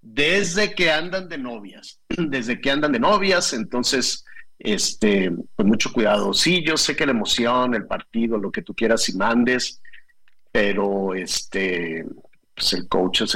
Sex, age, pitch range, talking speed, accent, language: male, 50-69, 115-160 Hz, 160 wpm, Mexican, Spanish